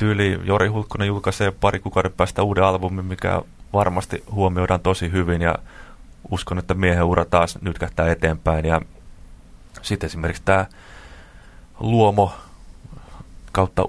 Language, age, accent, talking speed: Finnish, 30-49, native, 110 wpm